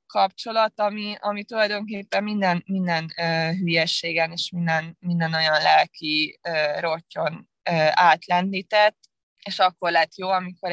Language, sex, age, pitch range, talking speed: Hungarian, female, 20-39, 165-195 Hz, 125 wpm